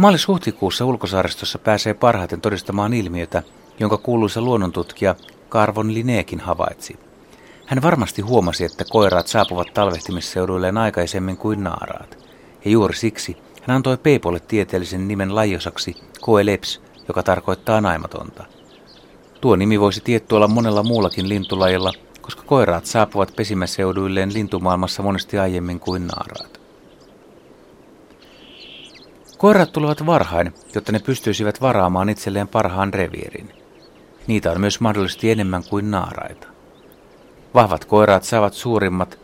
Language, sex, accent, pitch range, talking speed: Finnish, male, native, 95-115 Hz, 110 wpm